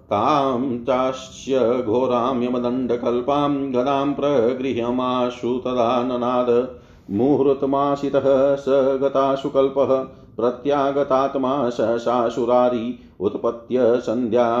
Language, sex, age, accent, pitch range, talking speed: Hindi, male, 40-59, native, 120-135 Hz, 60 wpm